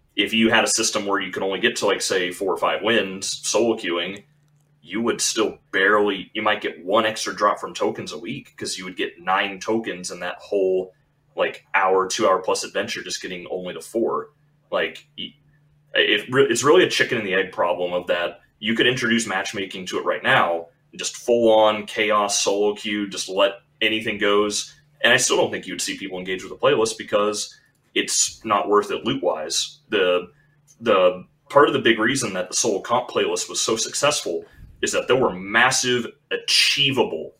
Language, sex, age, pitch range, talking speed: English, male, 30-49, 95-145 Hz, 195 wpm